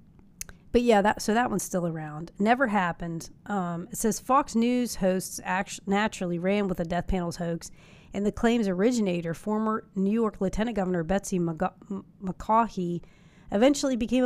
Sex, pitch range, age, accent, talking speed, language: female, 175-210 Hz, 30-49, American, 145 wpm, English